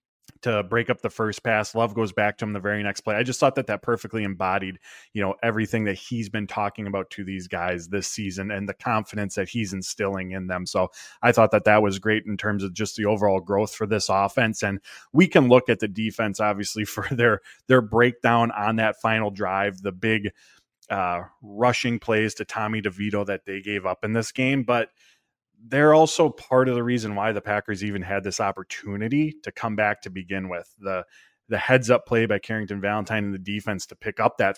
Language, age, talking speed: English, 20-39, 220 wpm